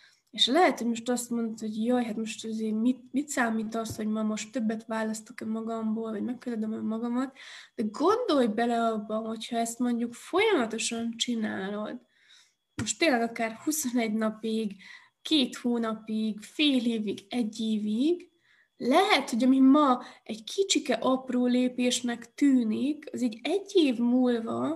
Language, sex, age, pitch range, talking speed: Hungarian, female, 20-39, 225-265 Hz, 145 wpm